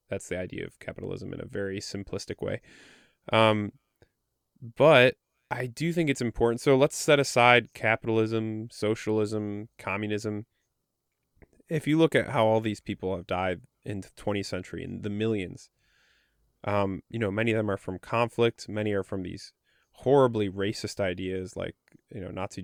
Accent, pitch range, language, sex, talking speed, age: American, 100-120 Hz, English, male, 160 wpm, 20-39